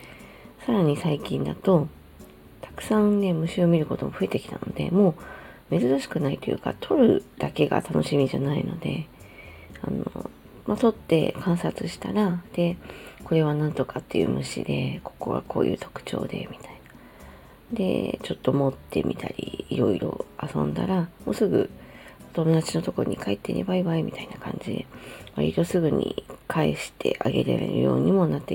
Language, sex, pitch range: Japanese, female, 125-180 Hz